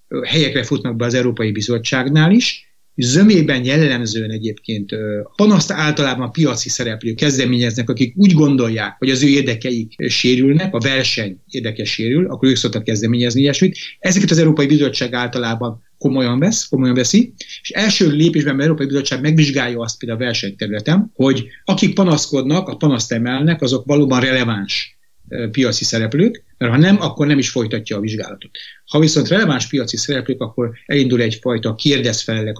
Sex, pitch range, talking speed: male, 115-150 Hz, 150 wpm